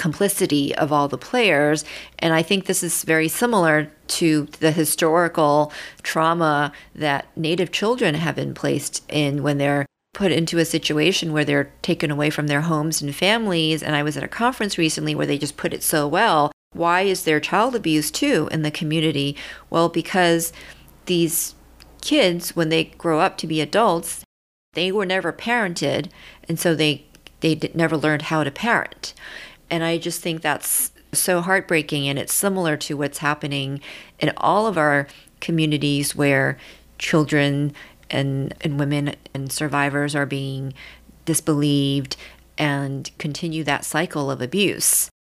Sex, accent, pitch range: female, American, 145-170 Hz